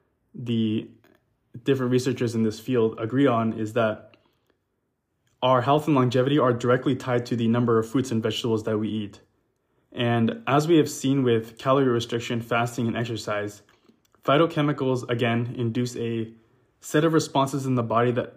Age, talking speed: 20-39, 160 wpm